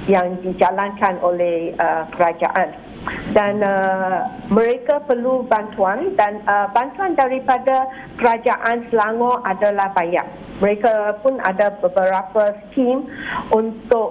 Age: 50-69